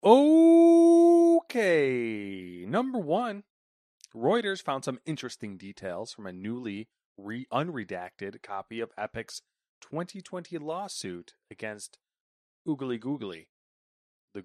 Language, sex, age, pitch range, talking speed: English, male, 30-49, 110-160 Hz, 85 wpm